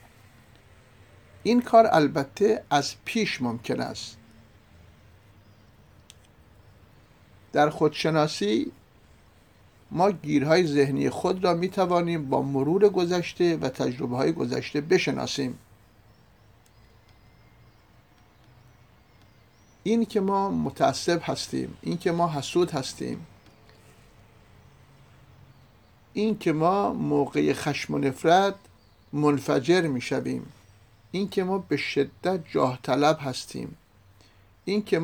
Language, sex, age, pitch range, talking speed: Persian, male, 60-79, 110-165 Hz, 80 wpm